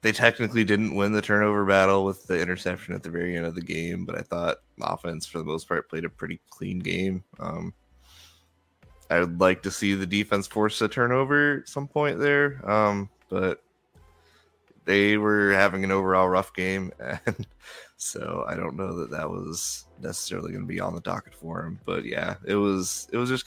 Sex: male